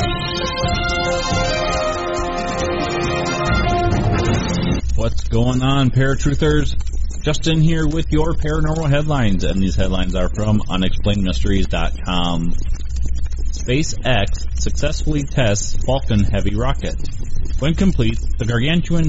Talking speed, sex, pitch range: 80 wpm, male, 95-130 Hz